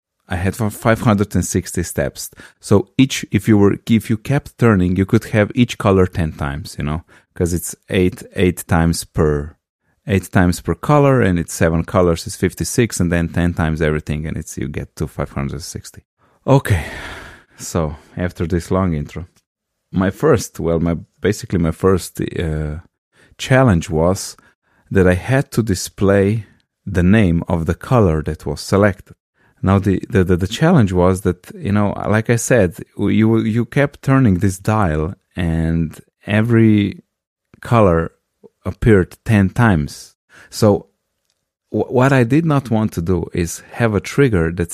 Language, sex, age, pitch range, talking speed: English, male, 30-49, 85-110 Hz, 155 wpm